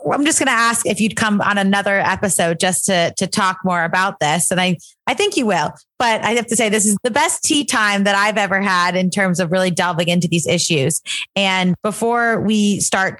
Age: 30-49